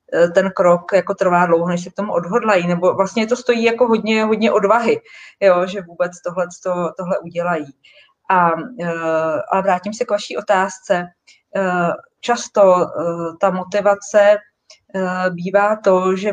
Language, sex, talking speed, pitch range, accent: Czech, female, 135 wpm, 175-200 Hz, native